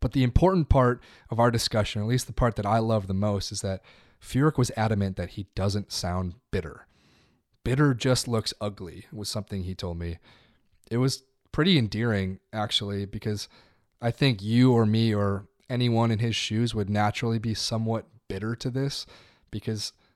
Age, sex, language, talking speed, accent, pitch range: 30-49, male, English, 175 wpm, American, 105-130 Hz